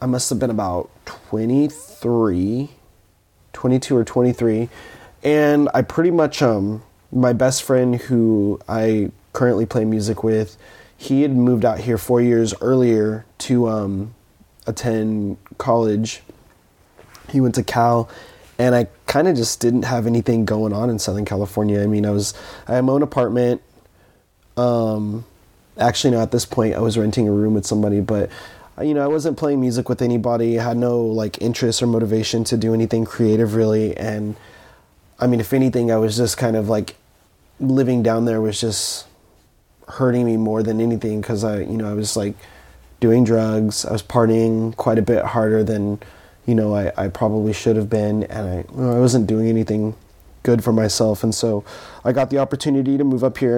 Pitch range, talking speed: 105-120 Hz, 180 wpm